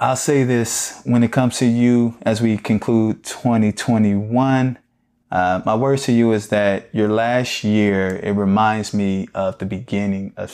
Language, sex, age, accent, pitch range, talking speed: English, male, 20-39, American, 100-115 Hz, 165 wpm